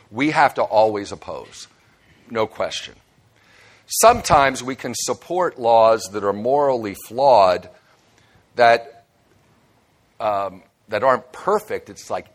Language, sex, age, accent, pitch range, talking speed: English, male, 50-69, American, 100-120 Hz, 105 wpm